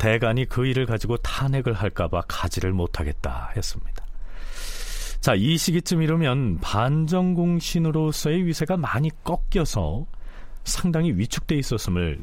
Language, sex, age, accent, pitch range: Korean, male, 40-59, native, 95-155 Hz